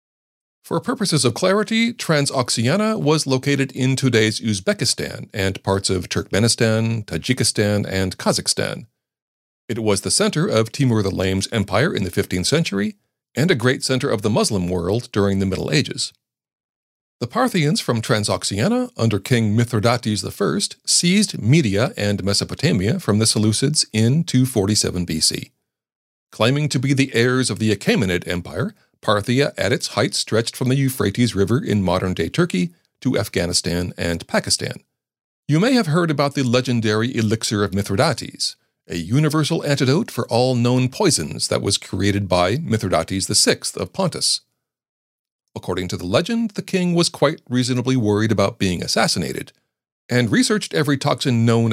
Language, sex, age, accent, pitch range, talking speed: English, male, 40-59, American, 100-140 Hz, 150 wpm